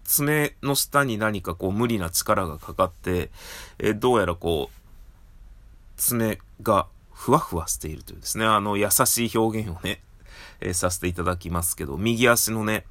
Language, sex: Japanese, male